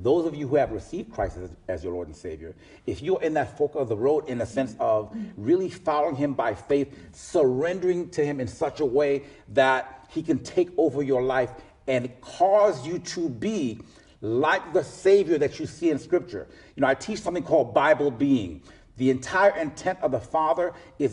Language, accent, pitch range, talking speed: English, American, 130-175 Hz, 205 wpm